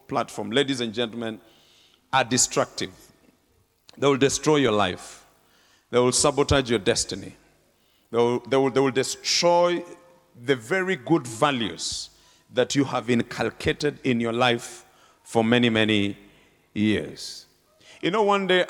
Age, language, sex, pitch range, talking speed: 50-69, English, male, 115-145 Hz, 130 wpm